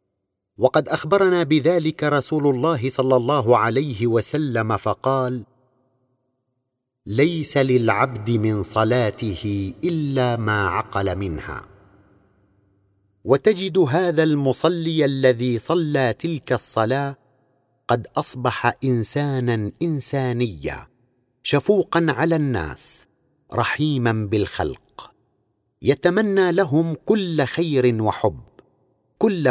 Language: Arabic